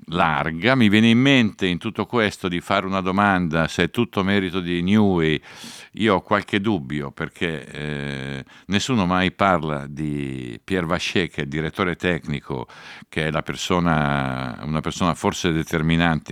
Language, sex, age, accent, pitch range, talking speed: Italian, male, 50-69, native, 70-90 Hz, 160 wpm